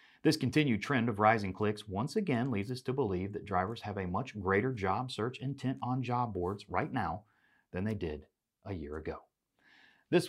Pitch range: 90-125 Hz